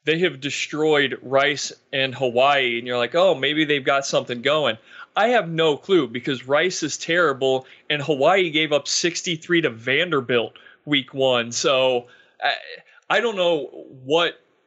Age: 30-49